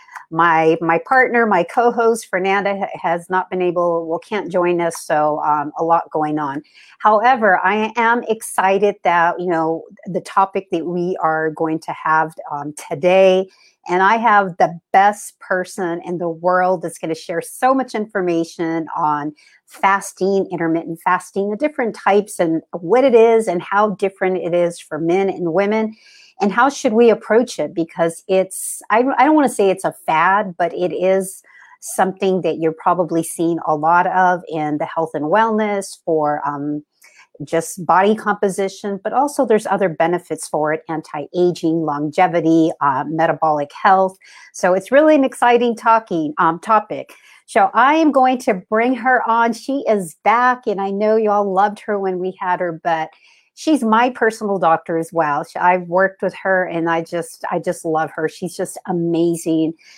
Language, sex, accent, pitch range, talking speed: English, female, American, 165-210 Hz, 175 wpm